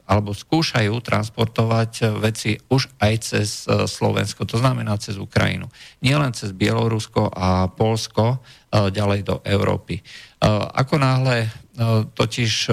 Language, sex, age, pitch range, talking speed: Slovak, male, 50-69, 105-125 Hz, 110 wpm